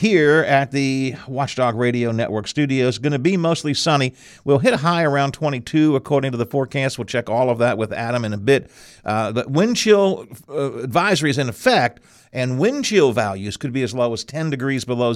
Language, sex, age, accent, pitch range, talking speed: English, male, 50-69, American, 110-145 Hz, 210 wpm